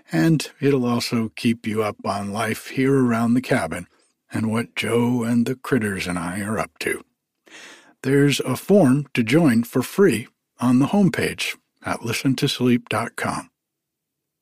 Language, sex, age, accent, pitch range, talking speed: English, male, 60-79, American, 115-150 Hz, 145 wpm